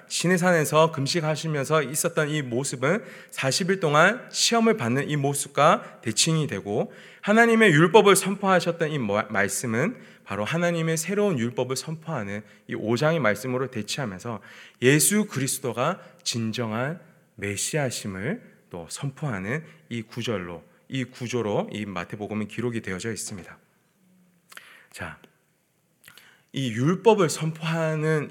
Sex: male